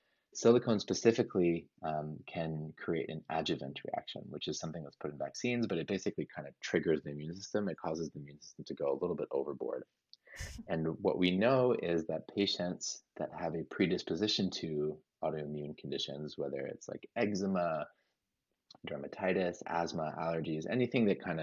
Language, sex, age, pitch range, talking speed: English, male, 20-39, 75-95 Hz, 165 wpm